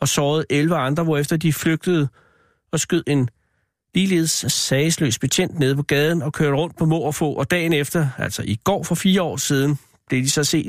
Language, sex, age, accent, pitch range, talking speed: Danish, male, 60-79, native, 135-160 Hz, 200 wpm